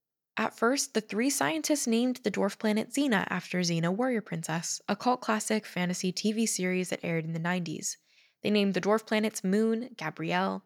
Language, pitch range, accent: English, 165-215 Hz, American